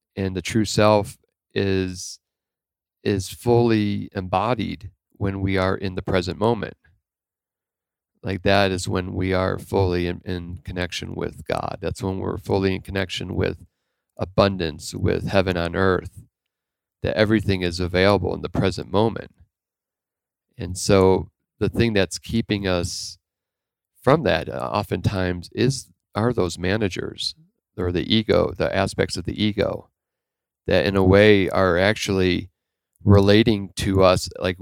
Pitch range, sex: 90-105 Hz, male